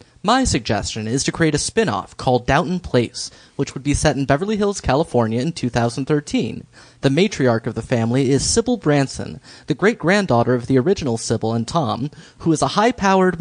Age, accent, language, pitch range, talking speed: 30-49, American, English, 120-170 Hz, 185 wpm